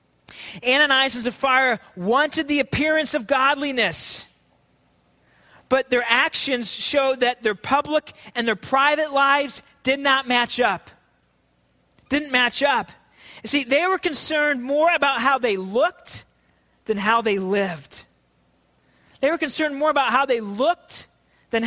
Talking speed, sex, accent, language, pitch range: 135 wpm, male, American, English, 220-280 Hz